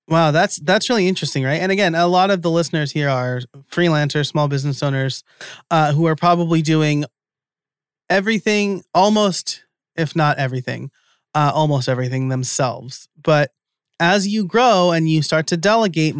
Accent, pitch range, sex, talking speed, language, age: American, 140-170 Hz, male, 155 wpm, English, 30-49